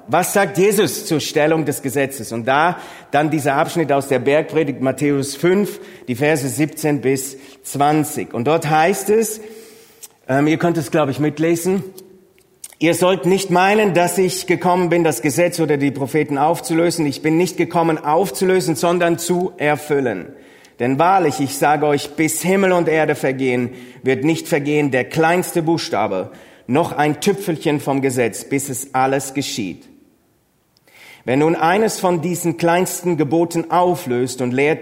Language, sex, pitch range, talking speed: German, male, 125-170 Hz, 155 wpm